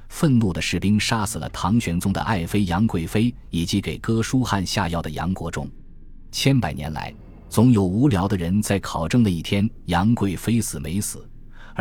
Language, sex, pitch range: Chinese, male, 85-115 Hz